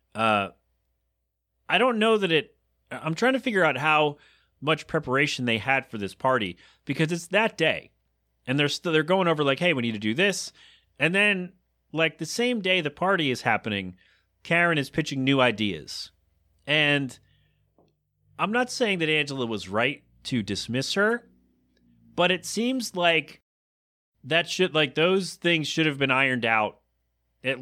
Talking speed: 165 wpm